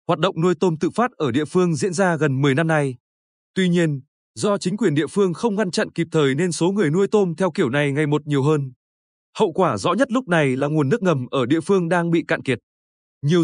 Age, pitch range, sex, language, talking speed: 20-39, 150-195 Hz, male, Vietnamese, 255 wpm